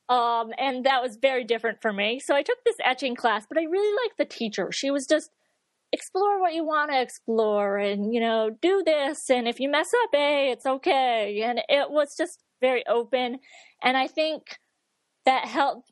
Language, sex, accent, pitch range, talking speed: English, female, American, 215-290 Hz, 200 wpm